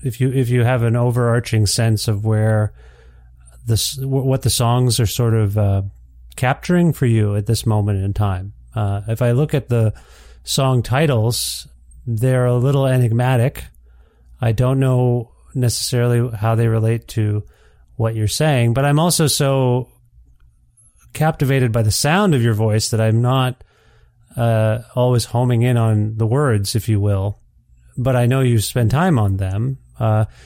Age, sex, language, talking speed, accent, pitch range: 30-49, male, English, 160 wpm, American, 105-125 Hz